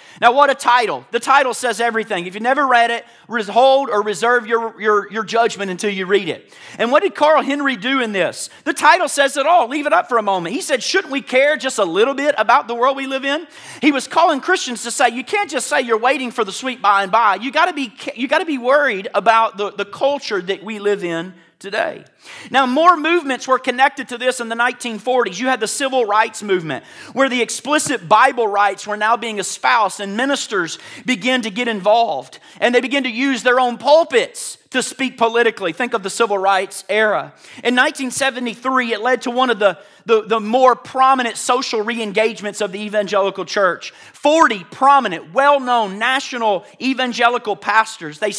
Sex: male